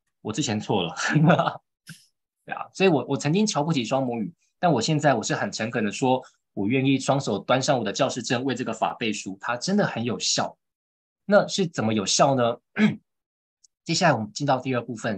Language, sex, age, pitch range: Chinese, male, 20-39, 120-165 Hz